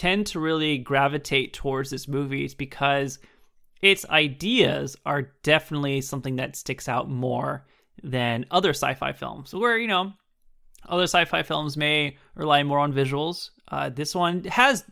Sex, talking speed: male, 150 wpm